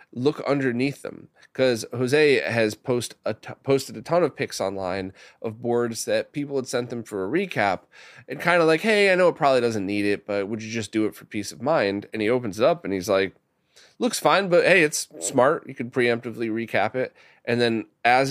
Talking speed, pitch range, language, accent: 225 wpm, 110-135 Hz, English, American